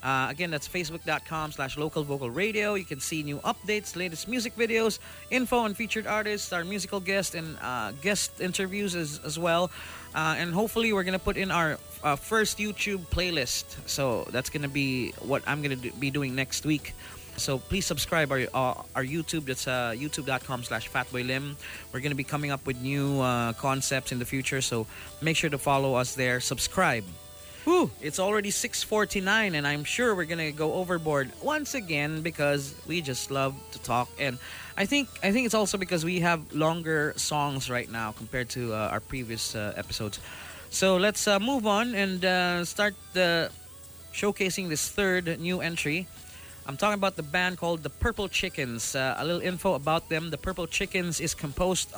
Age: 20-39